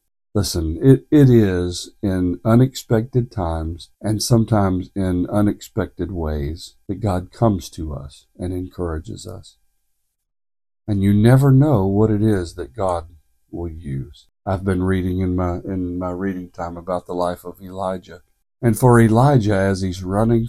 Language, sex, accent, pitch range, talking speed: English, male, American, 90-110 Hz, 150 wpm